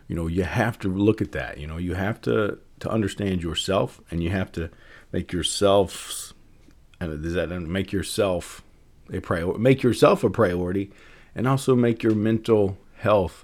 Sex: male